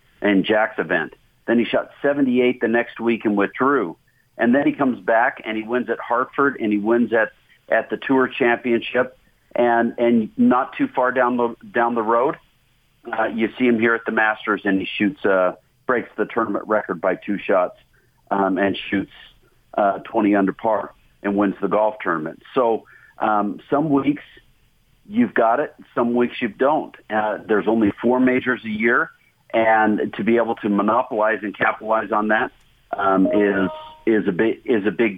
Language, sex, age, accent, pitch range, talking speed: English, male, 50-69, American, 100-120 Hz, 185 wpm